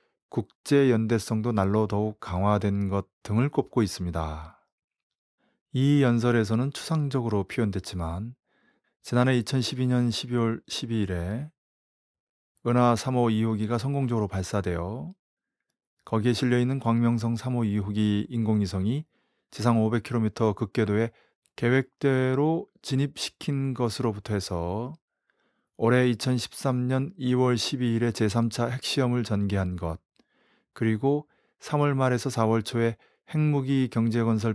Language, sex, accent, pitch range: Korean, male, native, 105-130 Hz